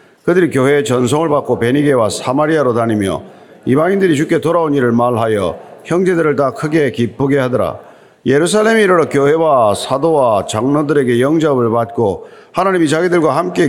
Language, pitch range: Korean, 130-170 Hz